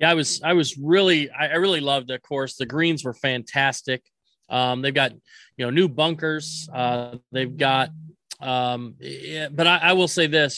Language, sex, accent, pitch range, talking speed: English, male, American, 135-175 Hz, 180 wpm